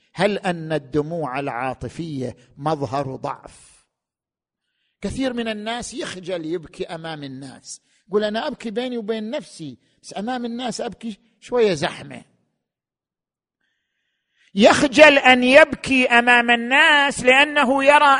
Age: 50-69